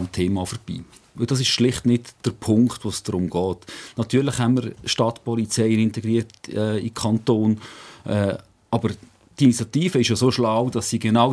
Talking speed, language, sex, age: 170 wpm, German, male, 40-59